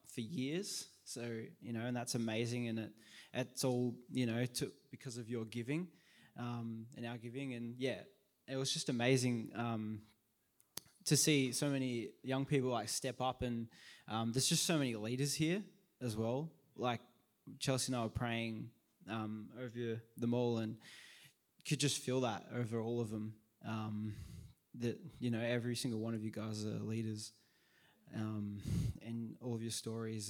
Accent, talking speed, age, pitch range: Australian, 170 wpm, 20-39, 115-140 Hz